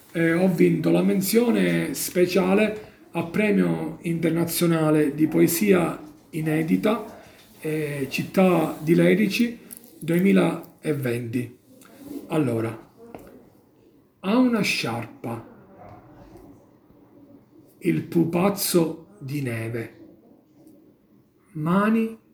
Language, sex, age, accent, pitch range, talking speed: Italian, male, 40-59, native, 145-190 Hz, 70 wpm